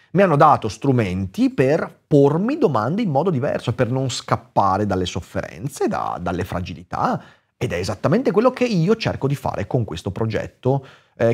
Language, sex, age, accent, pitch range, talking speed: Italian, male, 30-49, native, 105-160 Hz, 160 wpm